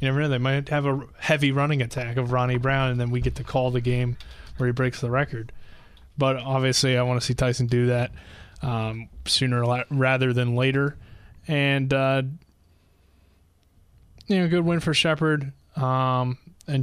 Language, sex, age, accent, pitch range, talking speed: English, male, 20-39, American, 125-135 Hz, 170 wpm